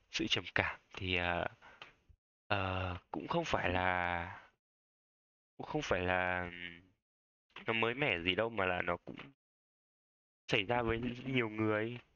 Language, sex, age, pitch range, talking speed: Vietnamese, male, 20-39, 90-115 Hz, 140 wpm